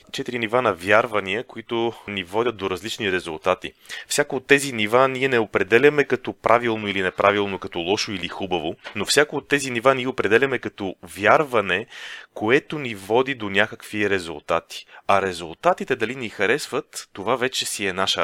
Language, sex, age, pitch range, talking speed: Bulgarian, male, 30-49, 95-125 Hz, 165 wpm